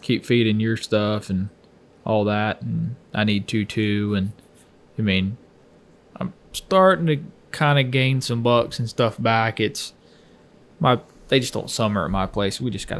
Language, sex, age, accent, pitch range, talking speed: English, male, 20-39, American, 105-125 Hz, 175 wpm